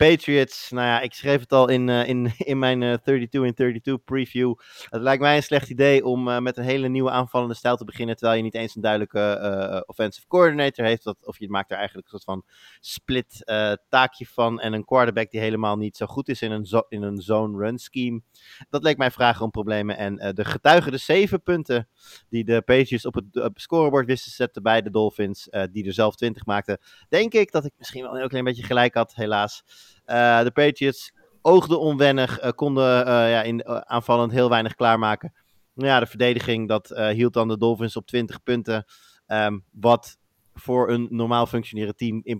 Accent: Dutch